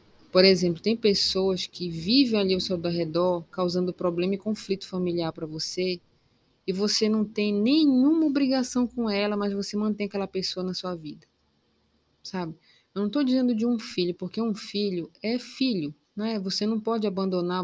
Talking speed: 175 wpm